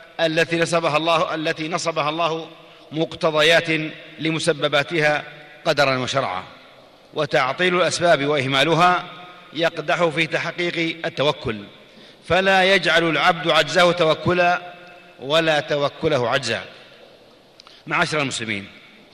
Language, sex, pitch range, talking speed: Arabic, male, 150-170 Hz, 75 wpm